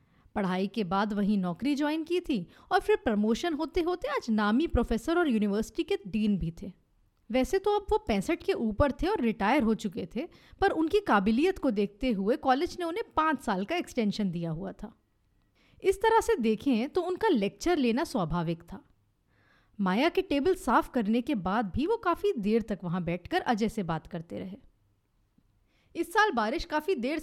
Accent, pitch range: native, 200-315 Hz